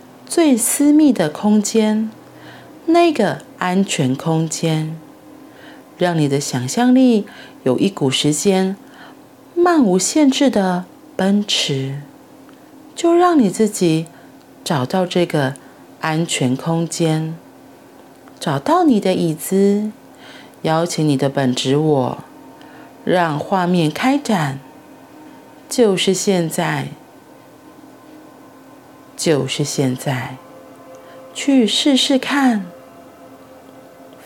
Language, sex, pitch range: Chinese, female, 150-230 Hz